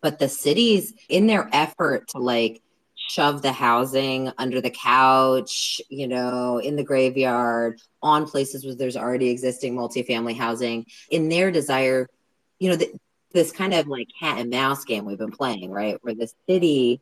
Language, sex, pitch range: English, female, 110-135 Hz